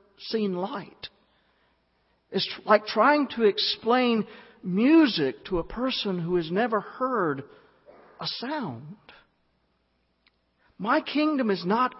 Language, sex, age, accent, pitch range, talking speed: English, male, 50-69, American, 140-225 Hz, 105 wpm